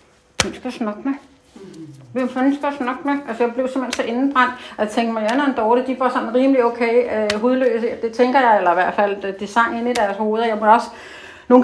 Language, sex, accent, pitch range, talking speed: Danish, female, native, 215-260 Hz, 220 wpm